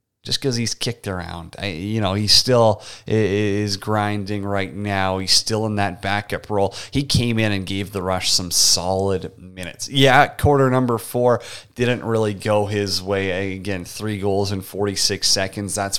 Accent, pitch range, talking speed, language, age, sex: American, 100-125 Hz, 170 wpm, English, 30-49, male